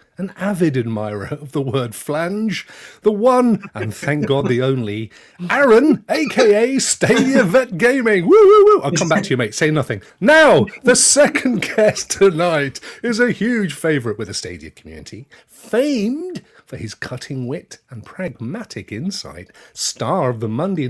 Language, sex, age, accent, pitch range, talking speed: English, male, 40-59, British, 130-220 Hz, 150 wpm